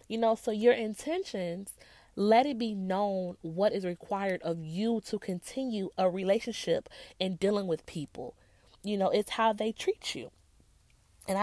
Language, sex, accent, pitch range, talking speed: English, female, American, 180-230 Hz, 155 wpm